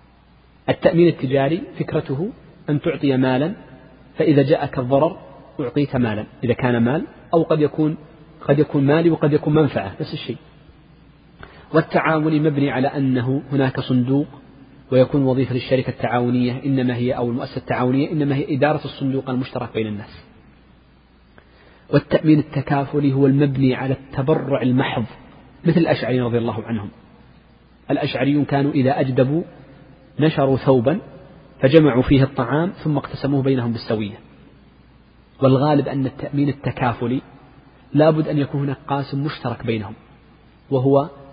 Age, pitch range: 40-59, 125-145 Hz